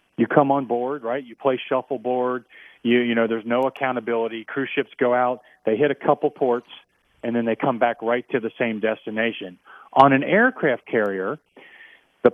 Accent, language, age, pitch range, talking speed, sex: American, English, 40-59, 115-145 Hz, 185 wpm, male